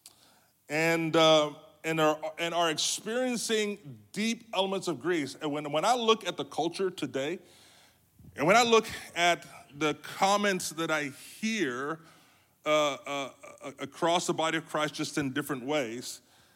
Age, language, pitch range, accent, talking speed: 30-49, English, 145-195 Hz, American, 150 wpm